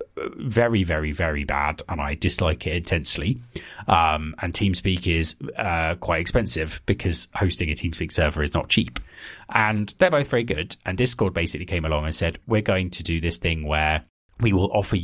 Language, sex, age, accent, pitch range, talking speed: English, male, 30-49, British, 80-105 Hz, 185 wpm